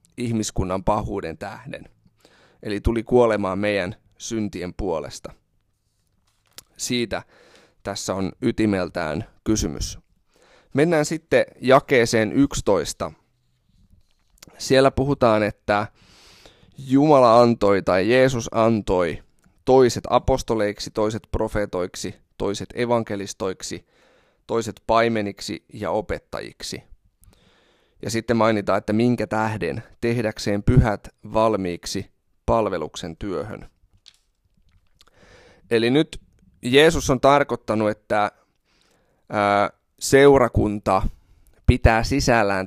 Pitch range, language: 100-120 Hz, Finnish